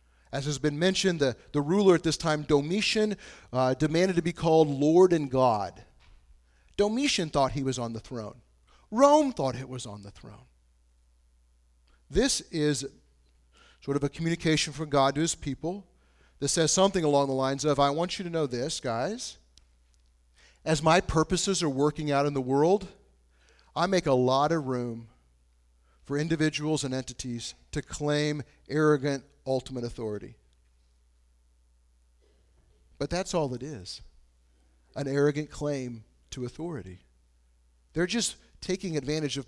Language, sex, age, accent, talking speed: English, male, 40-59, American, 145 wpm